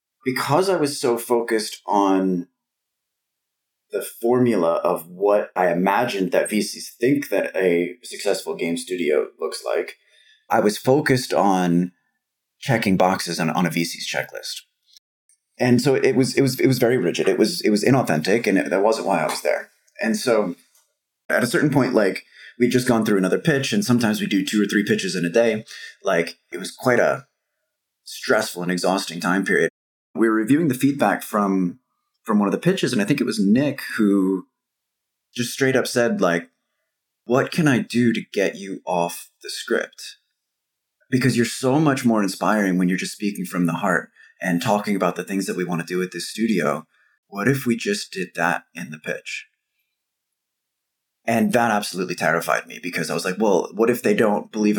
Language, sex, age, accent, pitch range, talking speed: English, male, 30-49, American, 95-120 Hz, 190 wpm